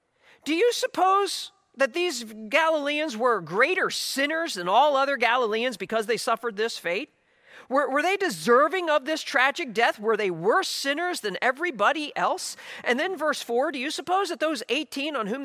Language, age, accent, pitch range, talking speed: English, 40-59, American, 250-360 Hz, 175 wpm